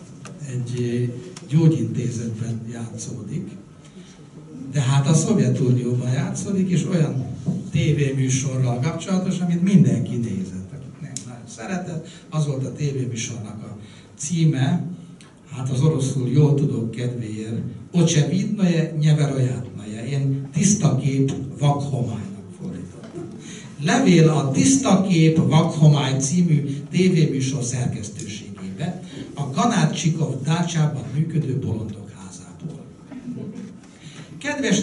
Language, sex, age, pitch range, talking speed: Hungarian, male, 60-79, 130-165 Hz, 90 wpm